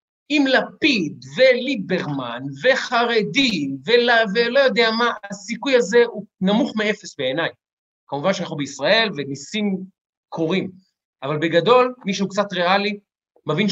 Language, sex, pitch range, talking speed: Hebrew, male, 170-230 Hz, 115 wpm